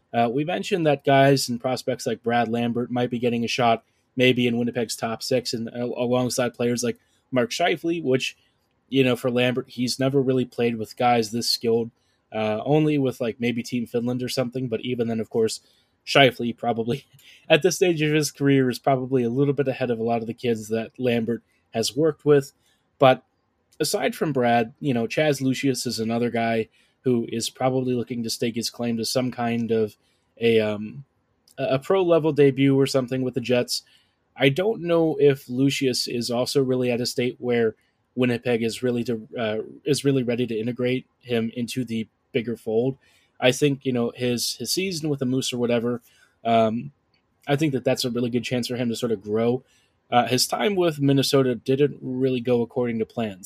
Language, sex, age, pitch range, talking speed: English, male, 20-39, 115-135 Hz, 200 wpm